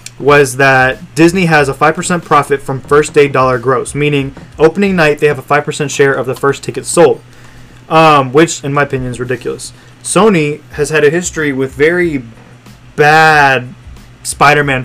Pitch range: 130-155 Hz